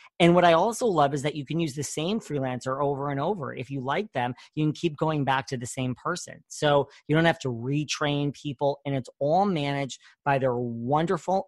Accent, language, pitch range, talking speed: American, English, 130-155 Hz, 225 wpm